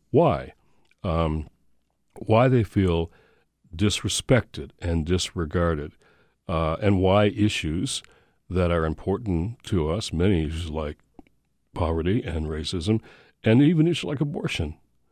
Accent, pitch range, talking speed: American, 80-105 Hz, 110 wpm